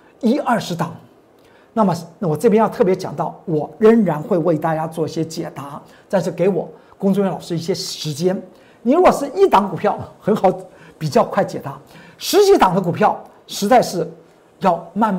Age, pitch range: 50-69, 165-225 Hz